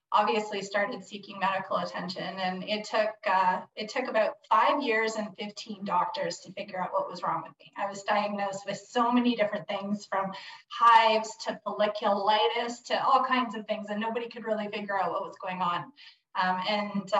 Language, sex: English, female